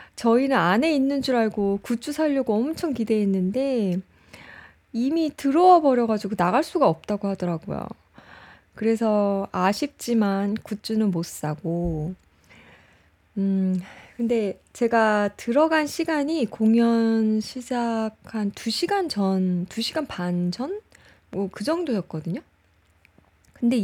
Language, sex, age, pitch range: Korean, female, 20-39, 185-255 Hz